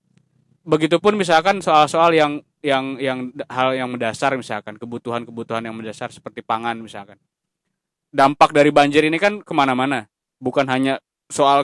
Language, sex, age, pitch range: Indonesian, male, 20-39, 130-155 Hz